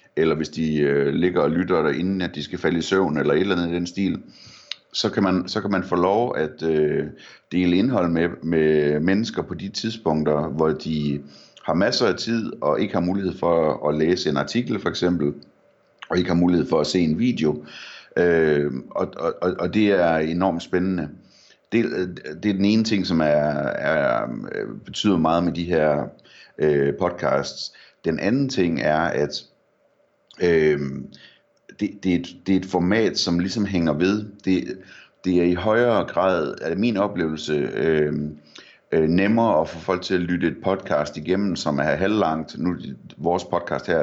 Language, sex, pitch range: Danish, male, 75-95 Hz